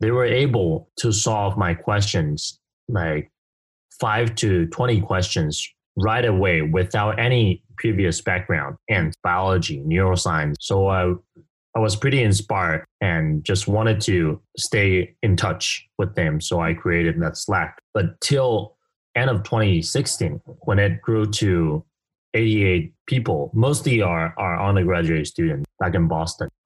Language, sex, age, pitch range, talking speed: English, male, 20-39, 85-115 Hz, 135 wpm